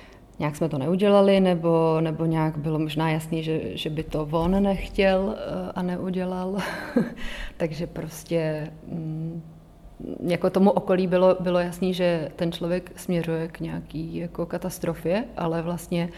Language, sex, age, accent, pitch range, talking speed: Czech, female, 30-49, native, 165-180 Hz, 135 wpm